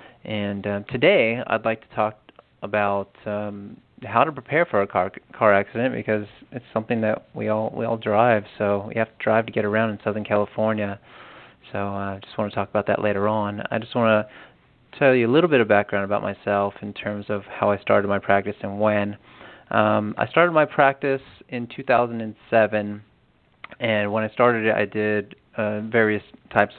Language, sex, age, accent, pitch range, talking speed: English, male, 30-49, American, 100-110 Hz, 195 wpm